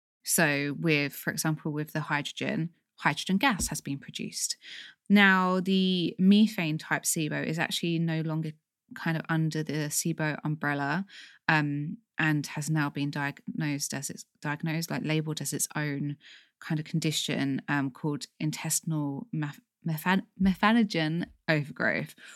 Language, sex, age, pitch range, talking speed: English, female, 20-39, 150-185 Hz, 135 wpm